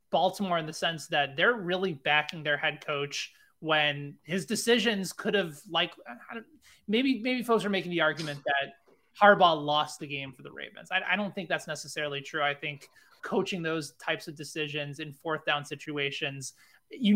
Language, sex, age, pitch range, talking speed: English, male, 20-39, 145-185 Hz, 180 wpm